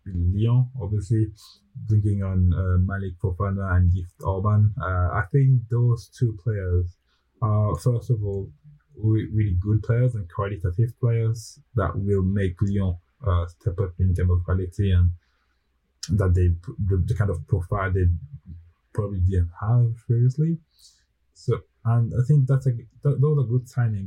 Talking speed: 155 wpm